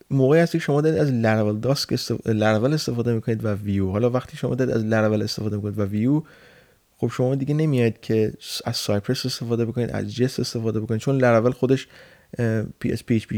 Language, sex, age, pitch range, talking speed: Persian, male, 20-39, 105-130 Hz, 195 wpm